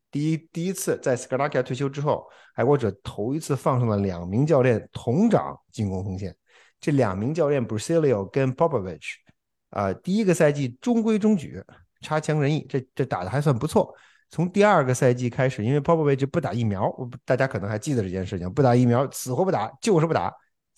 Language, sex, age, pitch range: Chinese, male, 50-69, 100-140 Hz